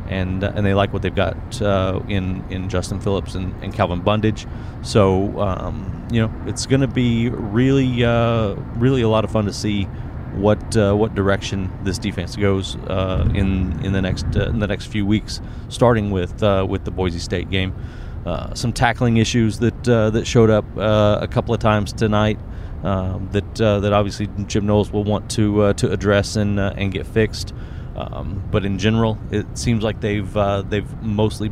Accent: American